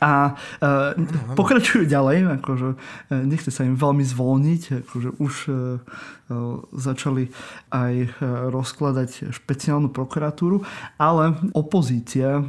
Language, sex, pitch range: Slovak, male, 125-145 Hz